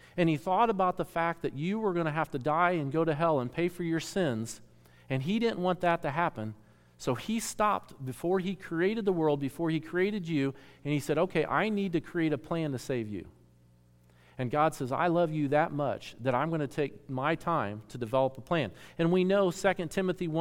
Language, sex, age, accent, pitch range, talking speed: English, male, 40-59, American, 135-185 Hz, 230 wpm